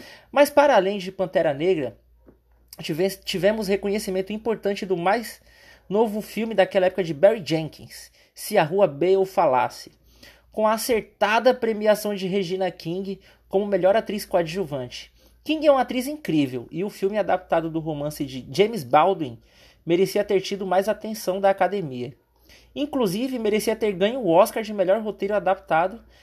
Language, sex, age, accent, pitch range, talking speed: Portuguese, male, 20-39, Brazilian, 180-220 Hz, 150 wpm